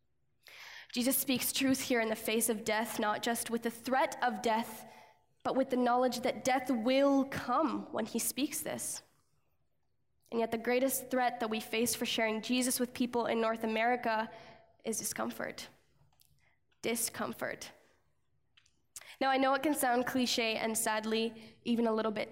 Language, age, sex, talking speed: English, 10-29, female, 160 wpm